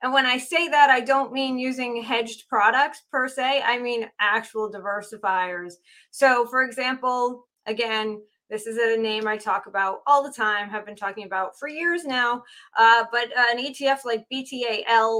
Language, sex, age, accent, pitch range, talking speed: English, female, 20-39, American, 210-265 Hz, 175 wpm